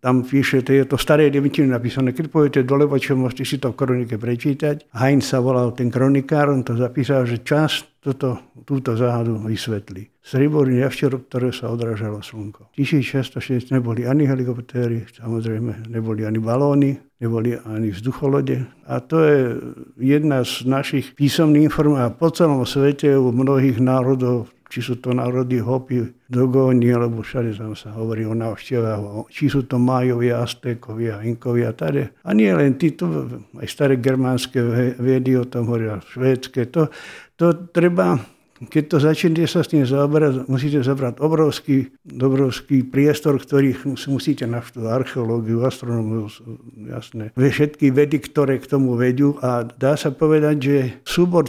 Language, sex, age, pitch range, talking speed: Slovak, male, 60-79, 120-140 Hz, 150 wpm